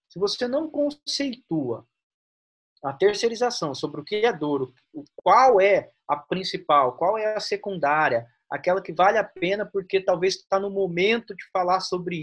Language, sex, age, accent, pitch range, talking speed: Portuguese, male, 30-49, Brazilian, 155-205 Hz, 155 wpm